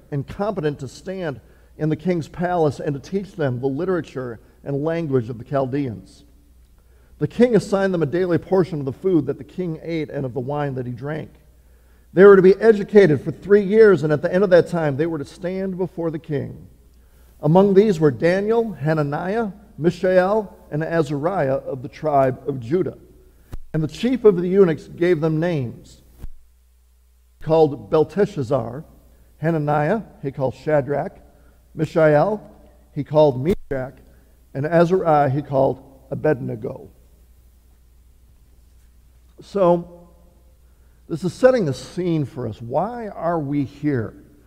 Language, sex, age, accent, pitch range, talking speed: English, male, 50-69, American, 120-185 Hz, 150 wpm